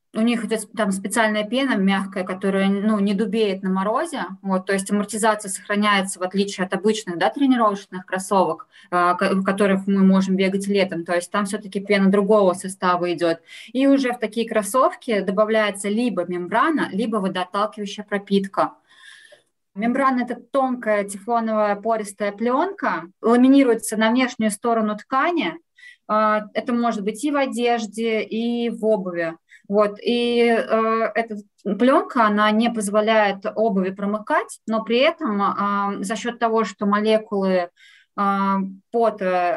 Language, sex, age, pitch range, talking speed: Russian, female, 20-39, 200-230 Hz, 135 wpm